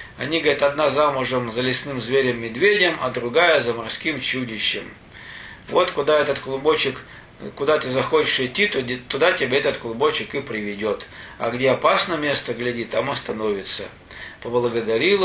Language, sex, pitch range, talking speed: Russian, male, 125-170 Hz, 135 wpm